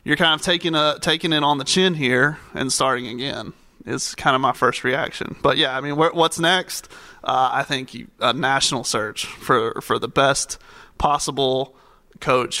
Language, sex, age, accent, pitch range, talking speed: English, male, 30-49, American, 140-175 Hz, 185 wpm